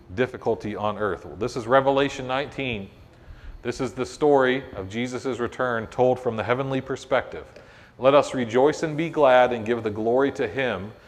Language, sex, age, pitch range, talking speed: English, male, 40-59, 105-130 Hz, 170 wpm